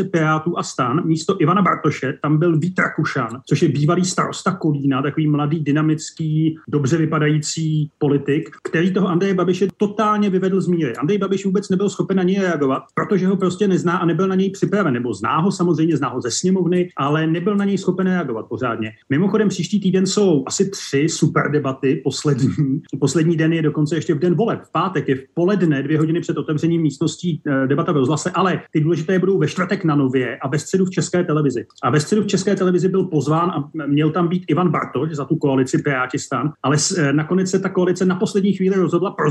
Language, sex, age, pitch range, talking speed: Slovak, male, 30-49, 150-180 Hz, 200 wpm